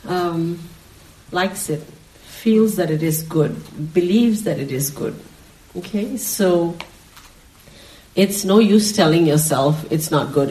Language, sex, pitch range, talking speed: English, female, 150-195 Hz, 130 wpm